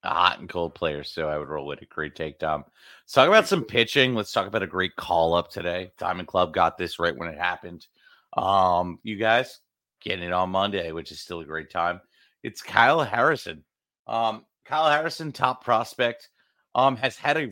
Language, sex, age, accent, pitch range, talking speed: English, male, 30-49, American, 90-115 Hz, 200 wpm